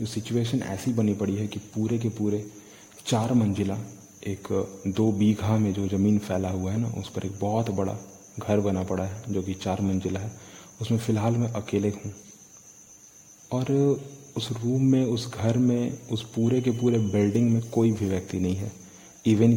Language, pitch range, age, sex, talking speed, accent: Hindi, 100-115 Hz, 30-49, male, 180 wpm, native